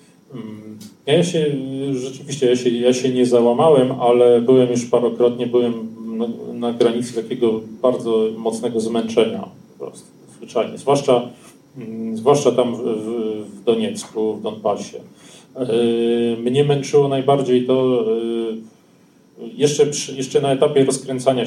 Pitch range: 115-135 Hz